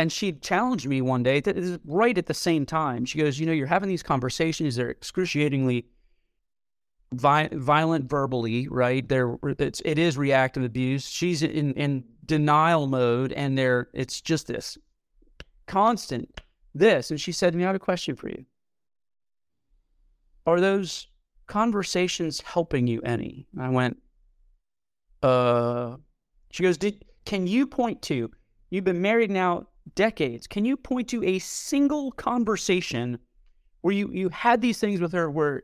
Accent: American